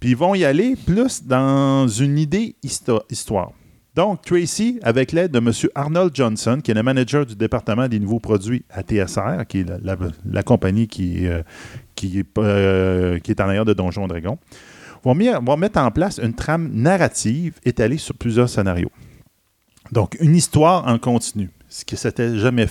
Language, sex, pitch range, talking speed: French, male, 110-150 Hz, 180 wpm